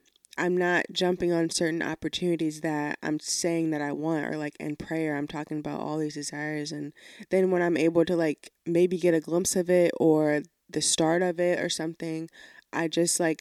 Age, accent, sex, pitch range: 20-39, American, female, 155-180 Hz